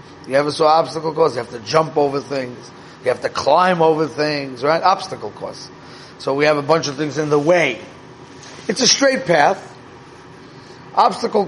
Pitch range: 145-175 Hz